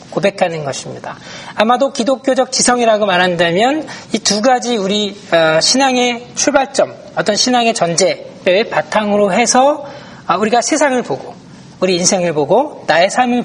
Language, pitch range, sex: Korean, 190-265 Hz, male